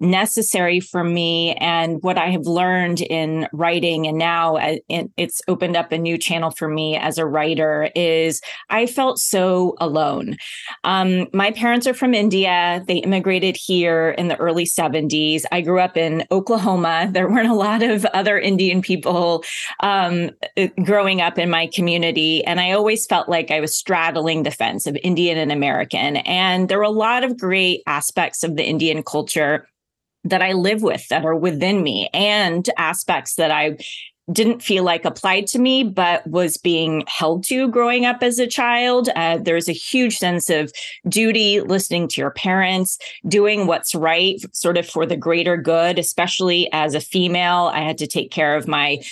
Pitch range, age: 165-205 Hz, 30-49